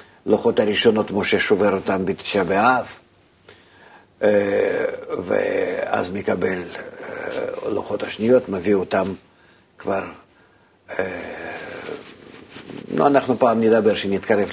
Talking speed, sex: 80 wpm, male